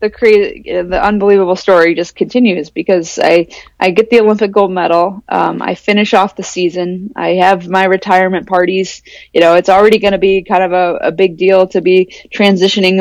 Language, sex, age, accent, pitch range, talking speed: English, female, 20-39, American, 175-200 Hz, 195 wpm